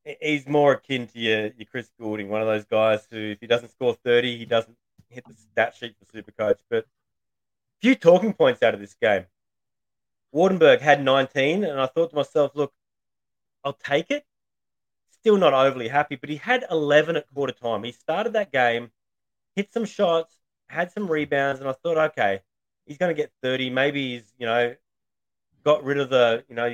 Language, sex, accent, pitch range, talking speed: English, male, Australian, 115-150 Hz, 195 wpm